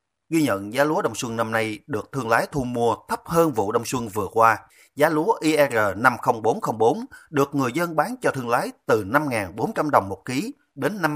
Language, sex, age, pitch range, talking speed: Vietnamese, male, 30-49, 110-150 Hz, 195 wpm